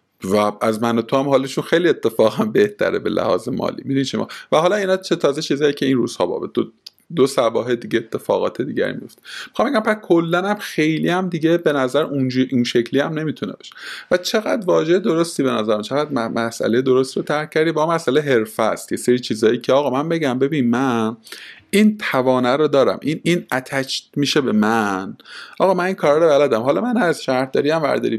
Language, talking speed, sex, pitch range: Persian, 200 wpm, male, 115-175 Hz